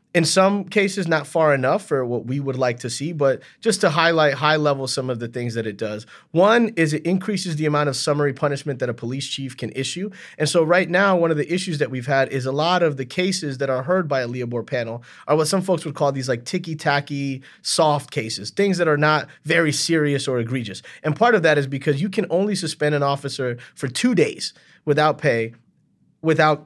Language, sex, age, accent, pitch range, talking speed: English, male, 30-49, American, 130-175 Hz, 230 wpm